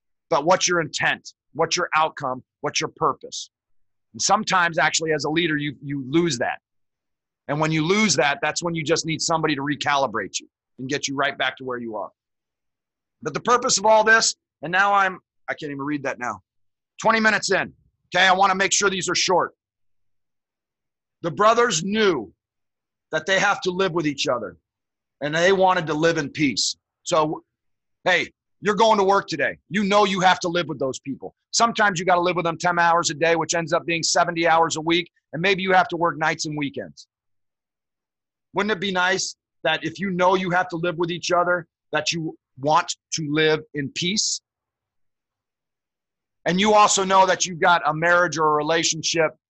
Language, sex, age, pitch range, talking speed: English, male, 40-59, 145-180 Hz, 200 wpm